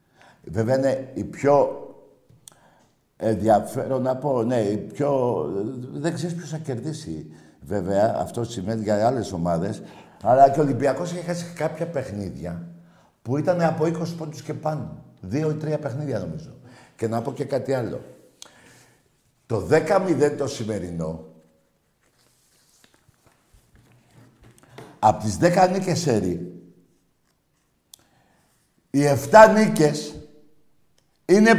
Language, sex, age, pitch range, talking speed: Greek, male, 60-79, 115-175 Hz, 115 wpm